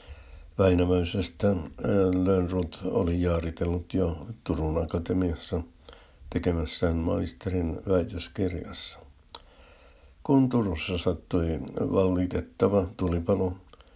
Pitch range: 80-95 Hz